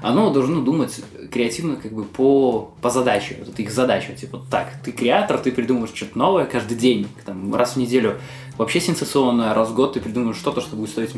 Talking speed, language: 200 wpm, Russian